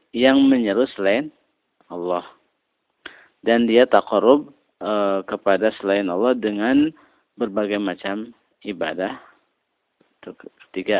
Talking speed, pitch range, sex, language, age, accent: 95 wpm, 100-125 Hz, male, Indonesian, 40-59, native